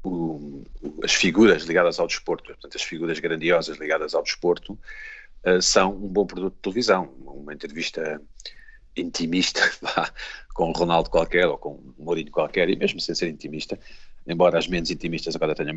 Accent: Portuguese